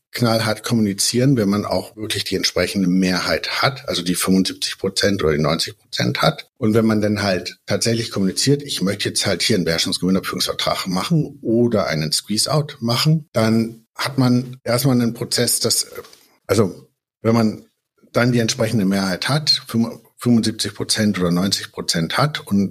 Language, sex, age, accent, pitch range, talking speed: German, male, 60-79, German, 95-125 Hz, 150 wpm